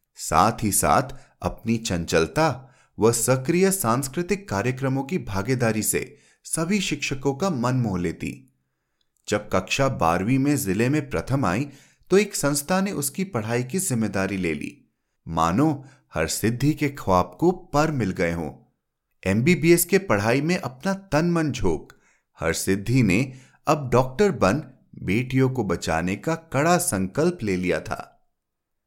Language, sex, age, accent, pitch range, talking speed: Hindi, male, 30-49, native, 100-150 Hz, 145 wpm